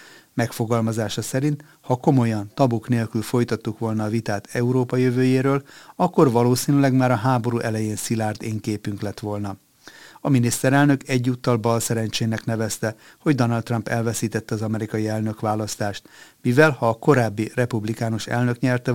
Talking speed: 140 wpm